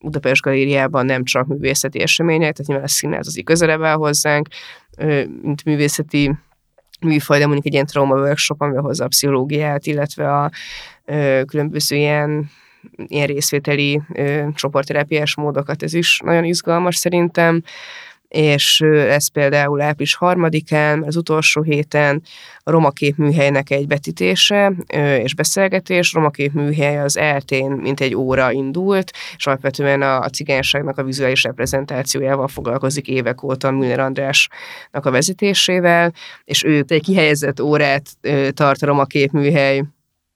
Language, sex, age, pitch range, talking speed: Hungarian, female, 20-39, 135-150 Hz, 120 wpm